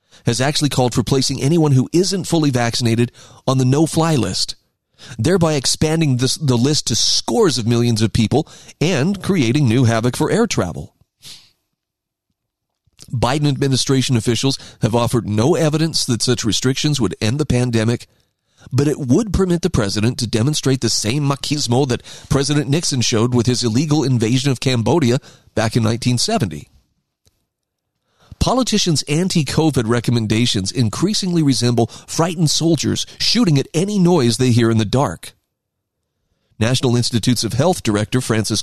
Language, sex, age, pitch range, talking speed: English, male, 40-59, 115-150 Hz, 140 wpm